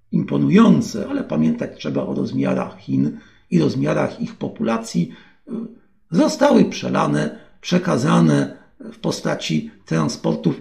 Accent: native